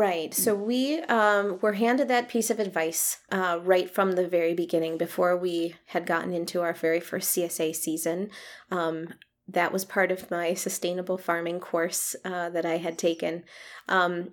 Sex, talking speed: female, 170 wpm